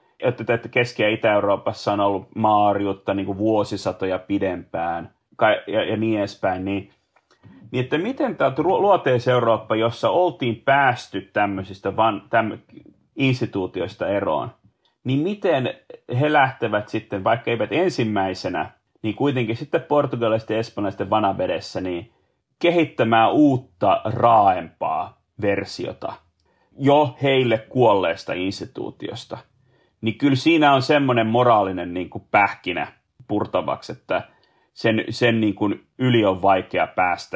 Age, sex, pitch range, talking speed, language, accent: 30-49, male, 100-125 Hz, 100 wpm, Finnish, native